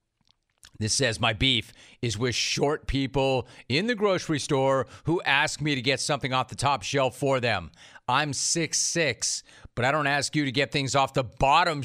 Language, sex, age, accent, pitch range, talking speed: English, male, 40-59, American, 120-150 Hz, 200 wpm